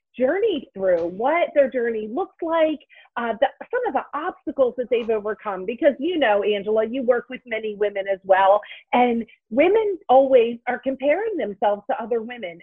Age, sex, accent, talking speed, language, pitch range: 40-59, female, American, 165 wpm, English, 230-300 Hz